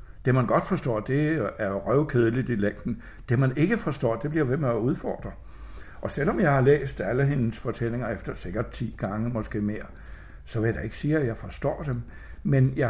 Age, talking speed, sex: 60-79, 205 wpm, male